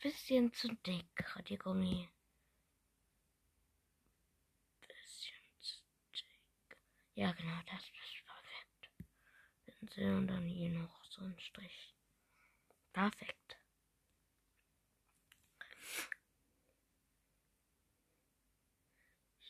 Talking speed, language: 75 wpm, German